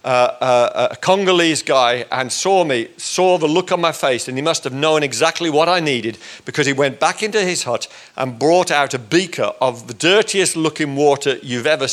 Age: 50-69